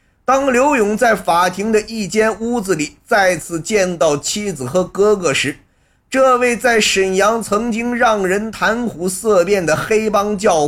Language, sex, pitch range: Chinese, male, 170-220 Hz